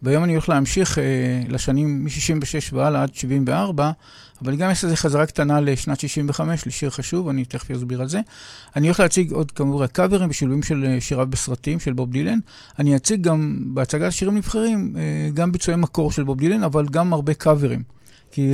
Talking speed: 185 wpm